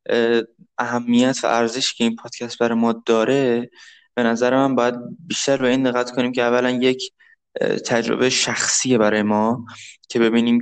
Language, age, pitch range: Persian, 20-39, 110-125 Hz